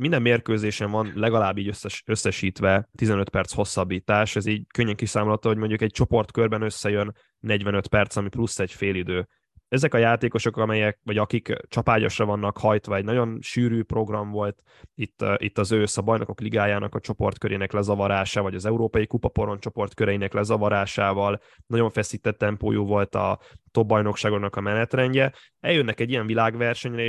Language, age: Hungarian, 10-29